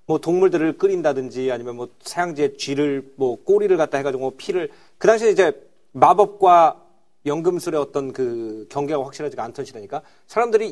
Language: Korean